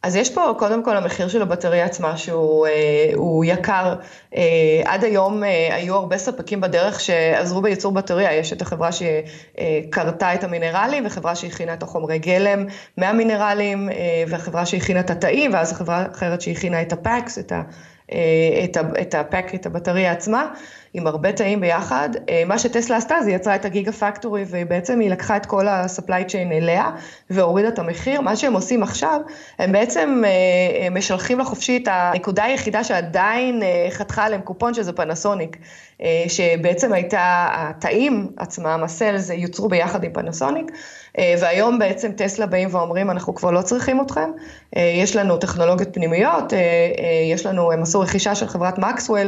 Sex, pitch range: female, 170-210 Hz